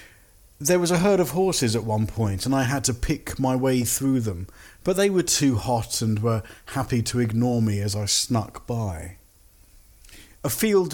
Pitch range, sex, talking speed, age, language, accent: 100-130 Hz, male, 190 wpm, 50-69, English, British